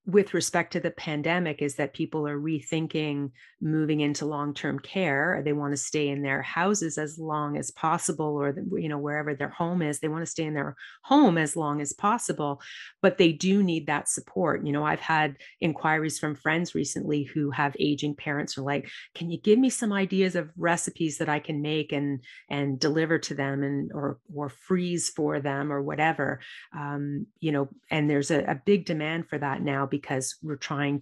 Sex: female